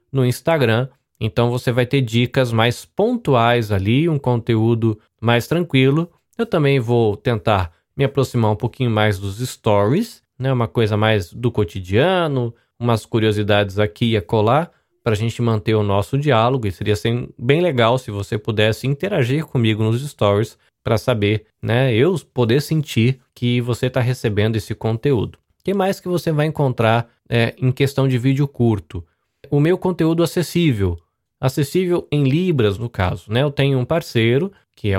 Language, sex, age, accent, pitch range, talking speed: Portuguese, male, 20-39, Brazilian, 115-150 Hz, 165 wpm